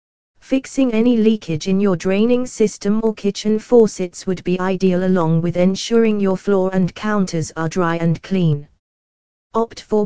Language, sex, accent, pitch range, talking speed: English, female, British, 175-210 Hz, 155 wpm